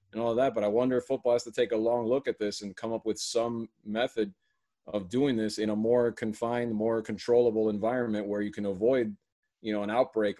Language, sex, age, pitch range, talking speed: English, male, 30-49, 110-125 Hz, 230 wpm